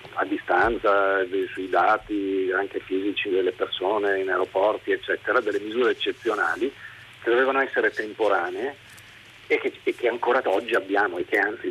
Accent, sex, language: native, male, Italian